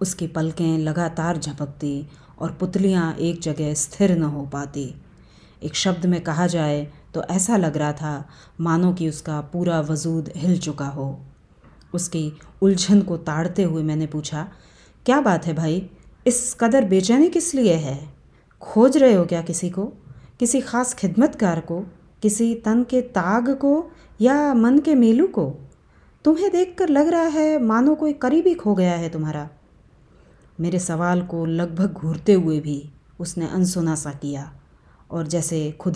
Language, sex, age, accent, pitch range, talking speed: Hindi, female, 30-49, native, 150-205 Hz, 155 wpm